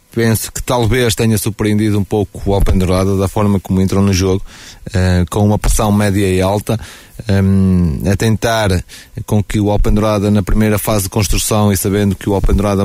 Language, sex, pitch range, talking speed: Portuguese, male, 95-110 Hz, 180 wpm